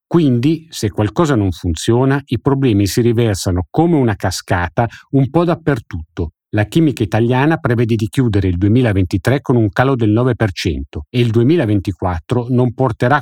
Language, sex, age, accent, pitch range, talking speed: Italian, male, 50-69, native, 100-140 Hz, 150 wpm